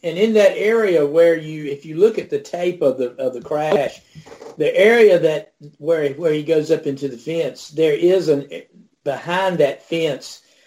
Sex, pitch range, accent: male, 140-175 Hz, American